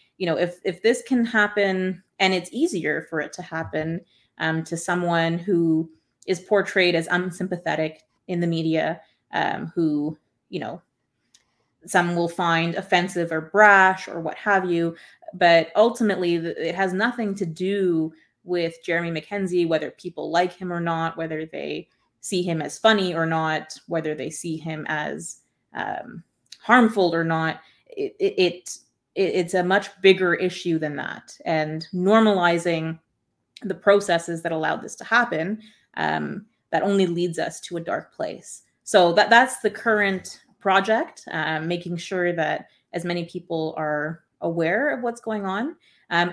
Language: English